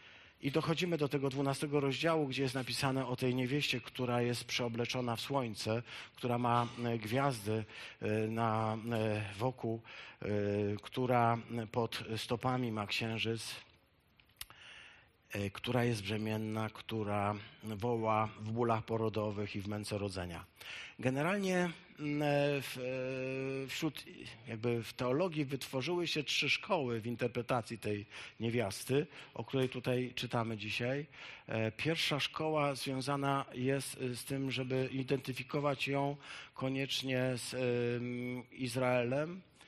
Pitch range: 115-140 Hz